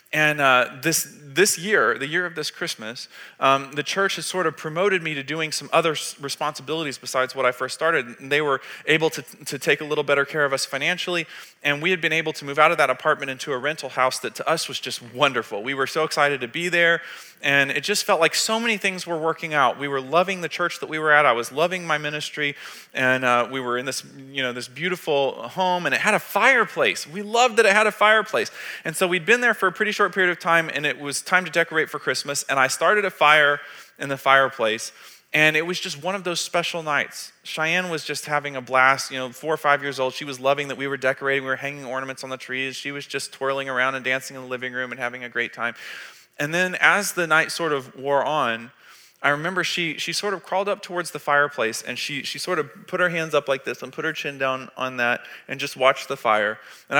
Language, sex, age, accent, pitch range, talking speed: English, male, 30-49, American, 130-165 Hz, 255 wpm